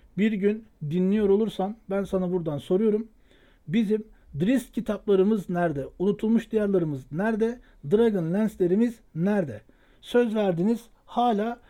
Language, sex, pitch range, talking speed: Turkish, male, 175-225 Hz, 110 wpm